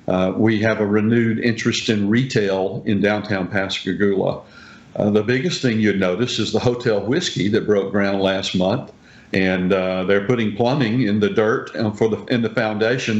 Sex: male